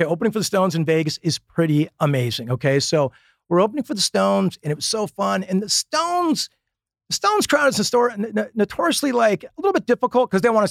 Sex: male